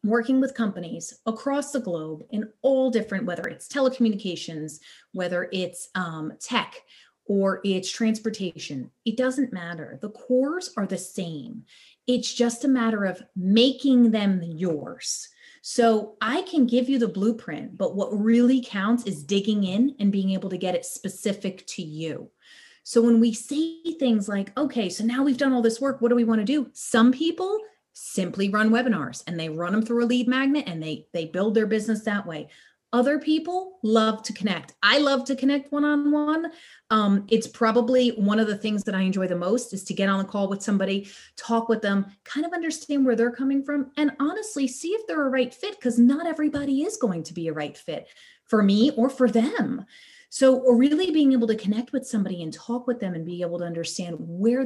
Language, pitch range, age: English, 195-265 Hz, 30-49